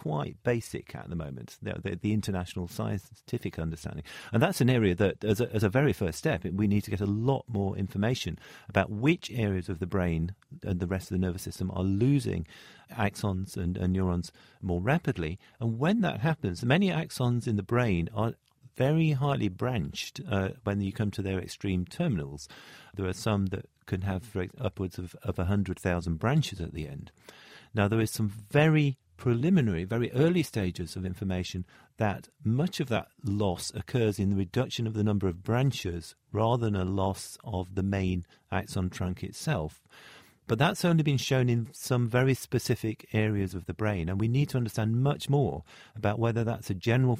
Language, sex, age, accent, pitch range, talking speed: English, male, 40-59, British, 95-120 Hz, 185 wpm